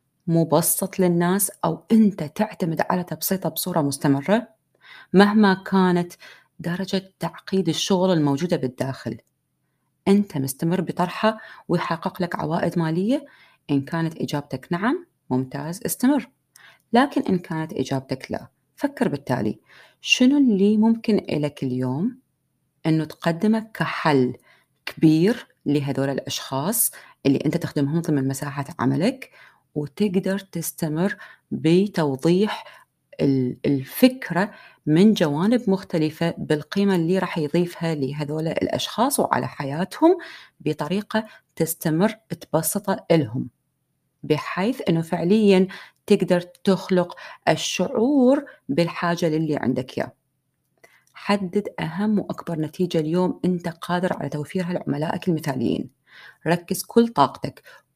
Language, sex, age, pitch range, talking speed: Arabic, female, 30-49, 150-195 Hz, 100 wpm